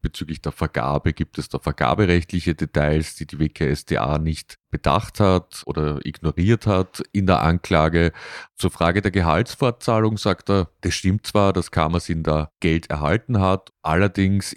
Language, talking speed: German, 150 wpm